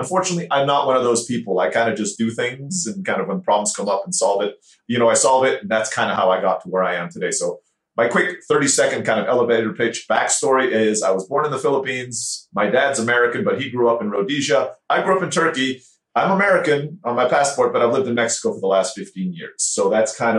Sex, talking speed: male, 260 wpm